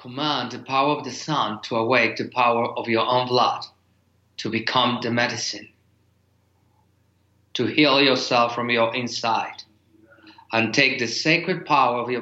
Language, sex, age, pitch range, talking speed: English, male, 40-59, 100-125 Hz, 150 wpm